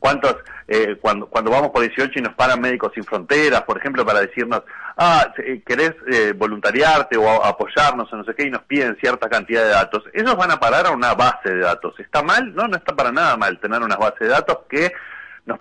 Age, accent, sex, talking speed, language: 40-59, Argentinian, male, 225 wpm, Spanish